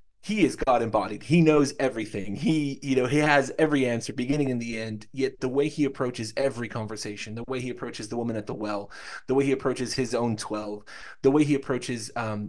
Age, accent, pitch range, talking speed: 30-49, American, 125-155 Hz, 220 wpm